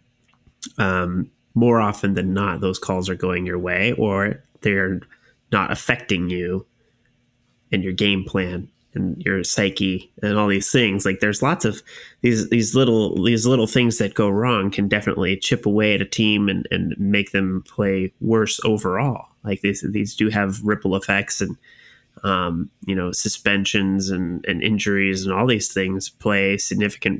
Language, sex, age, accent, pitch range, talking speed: English, male, 20-39, American, 95-110 Hz, 165 wpm